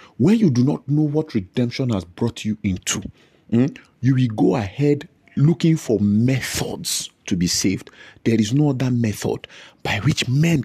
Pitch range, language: 105-140 Hz, English